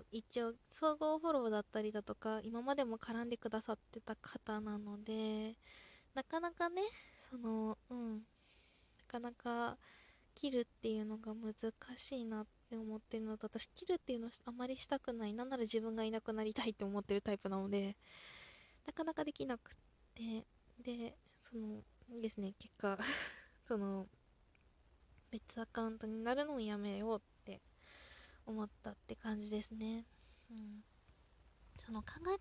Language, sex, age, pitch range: Japanese, female, 20-39, 215-255 Hz